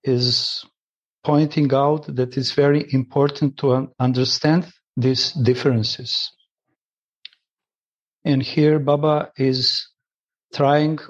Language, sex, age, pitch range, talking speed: English, male, 50-69, 130-155 Hz, 85 wpm